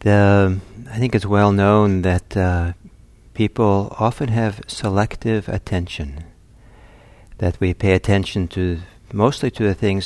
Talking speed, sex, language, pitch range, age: 130 wpm, male, English, 90-105 Hz, 60-79